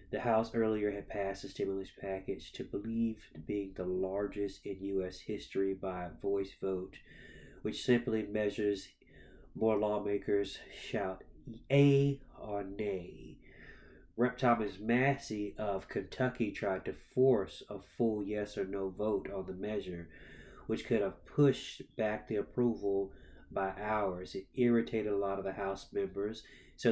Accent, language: American, English